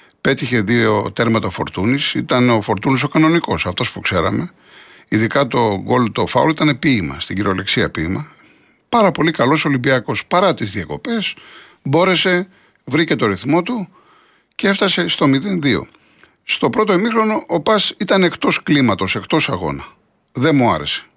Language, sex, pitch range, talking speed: Greek, male, 120-195 Hz, 145 wpm